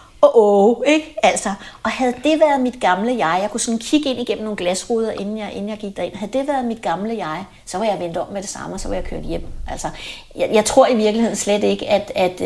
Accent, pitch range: native, 210-255 Hz